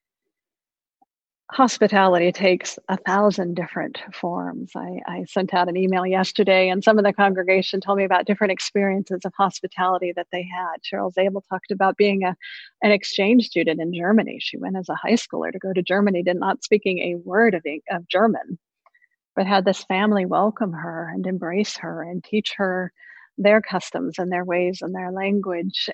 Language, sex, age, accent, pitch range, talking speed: English, female, 40-59, American, 180-210 Hz, 180 wpm